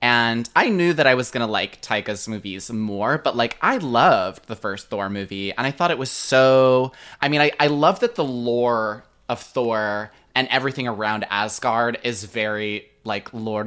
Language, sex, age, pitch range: English, male, 20-39, 110-130 Hz